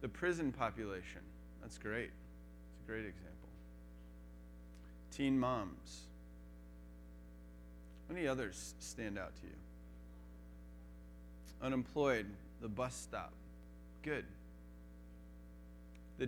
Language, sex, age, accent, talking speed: English, male, 20-39, American, 85 wpm